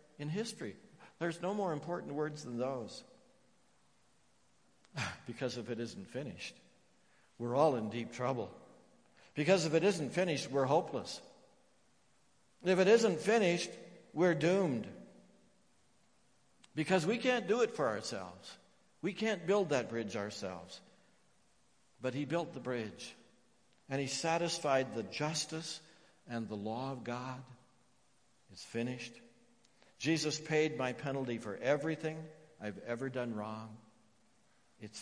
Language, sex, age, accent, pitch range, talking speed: English, male, 60-79, American, 115-160 Hz, 125 wpm